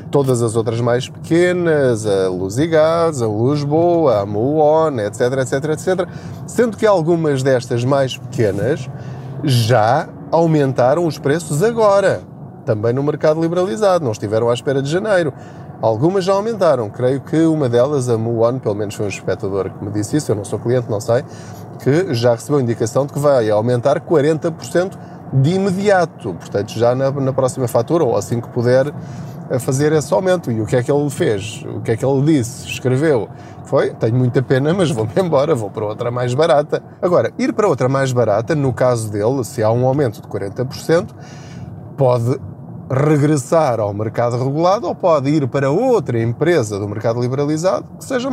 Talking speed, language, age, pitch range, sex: 175 wpm, Portuguese, 20-39, 120-160 Hz, male